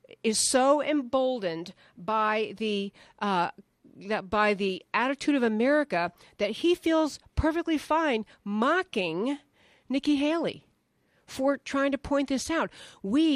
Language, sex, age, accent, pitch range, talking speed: English, female, 50-69, American, 195-265 Hz, 115 wpm